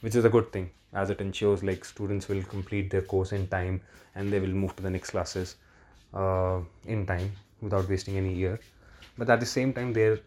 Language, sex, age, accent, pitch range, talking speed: Hindi, male, 20-39, native, 95-110 Hz, 215 wpm